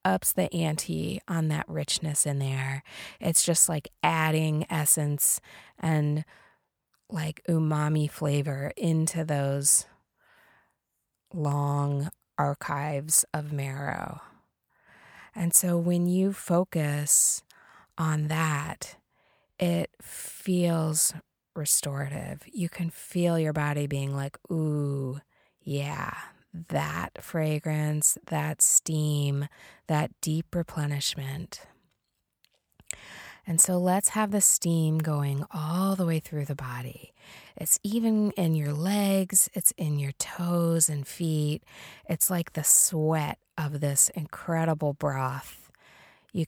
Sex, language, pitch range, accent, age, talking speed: female, English, 145-170 Hz, American, 20-39, 105 wpm